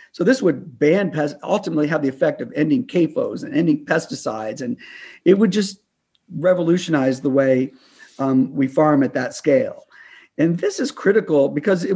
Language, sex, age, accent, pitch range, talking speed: English, male, 50-69, American, 150-190 Hz, 170 wpm